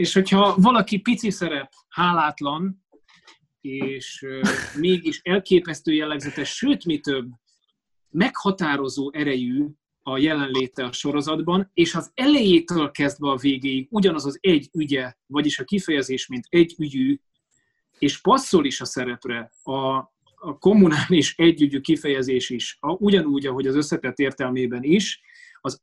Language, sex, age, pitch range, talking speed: Hungarian, male, 30-49, 135-175 Hz, 125 wpm